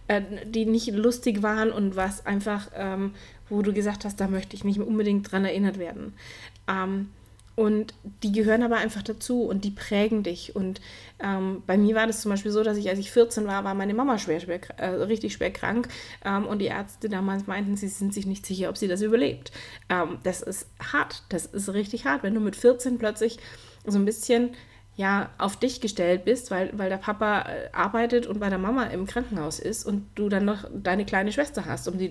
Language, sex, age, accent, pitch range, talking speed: German, female, 30-49, German, 190-215 Hz, 215 wpm